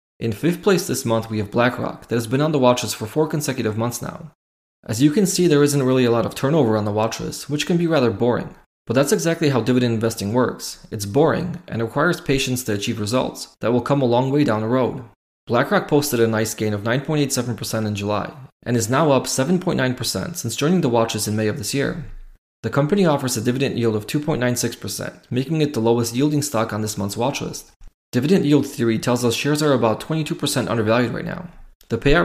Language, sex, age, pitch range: English, male, 20-39, 110-145 Hz